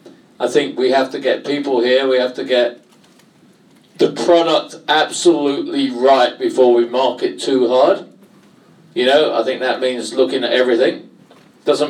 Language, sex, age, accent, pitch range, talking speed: English, male, 50-69, British, 125-150 Hz, 155 wpm